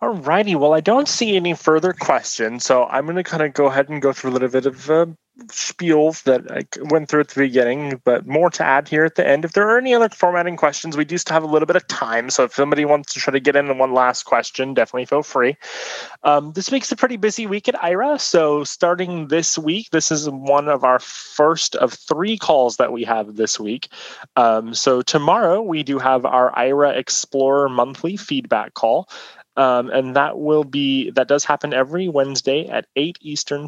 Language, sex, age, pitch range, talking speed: English, male, 20-39, 130-160 Hz, 225 wpm